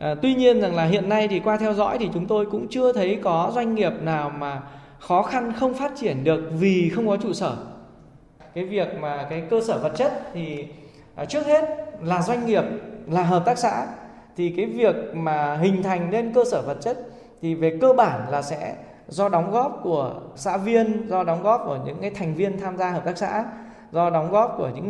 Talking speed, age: 220 wpm, 20-39